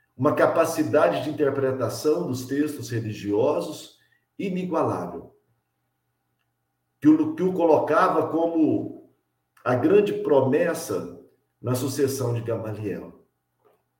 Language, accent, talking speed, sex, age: Portuguese, Brazilian, 85 wpm, male, 50-69